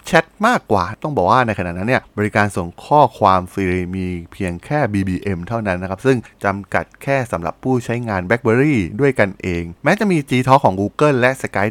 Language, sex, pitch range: Thai, male, 95-130 Hz